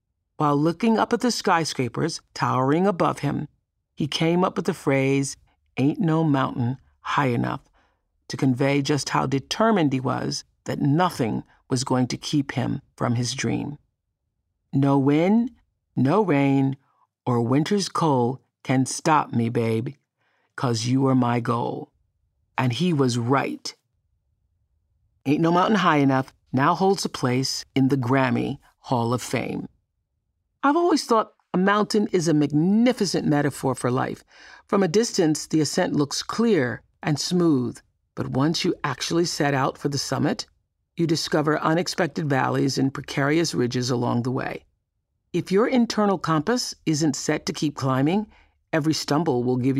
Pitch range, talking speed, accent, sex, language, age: 130-165 Hz, 150 wpm, American, female, English, 50-69